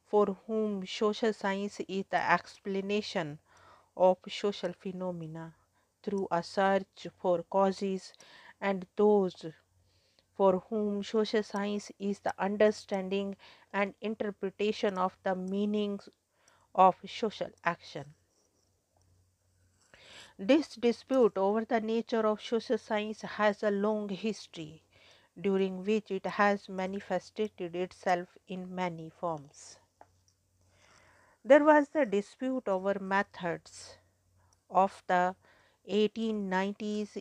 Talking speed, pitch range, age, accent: 100 wpm, 180-210 Hz, 50-69, Indian